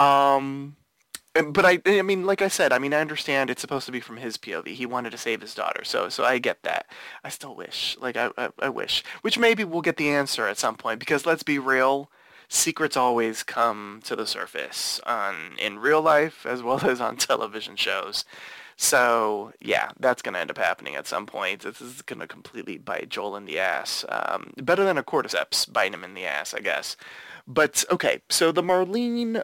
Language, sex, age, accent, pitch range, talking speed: English, male, 20-39, American, 125-160 Hz, 210 wpm